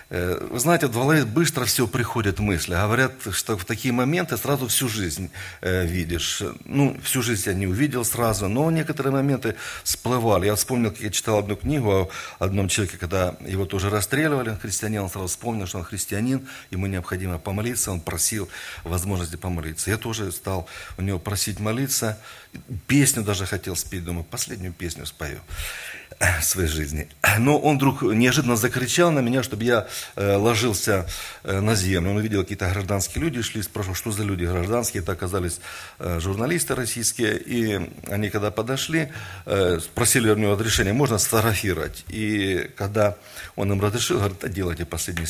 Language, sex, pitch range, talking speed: Russian, male, 90-115 Hz, 160 wpm